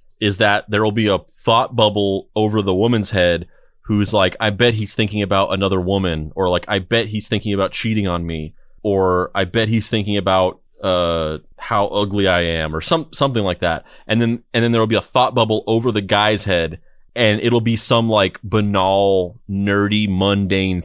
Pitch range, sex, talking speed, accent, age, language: 95-115 Hz, male, 200 wpm, American, 30-49, English